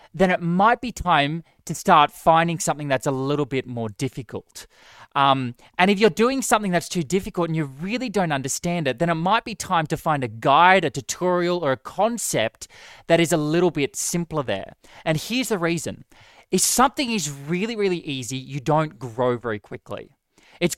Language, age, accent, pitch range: English, 20-39, Australian, 140-190 Hz